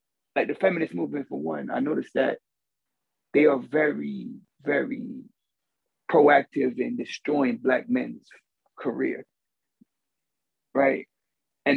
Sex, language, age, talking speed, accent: male, English, 30-49, 105 wpm, American